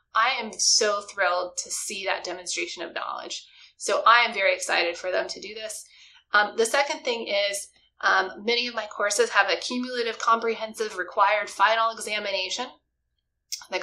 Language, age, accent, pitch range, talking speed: English, 20-39, American, 195-235 Hz, 165 wpm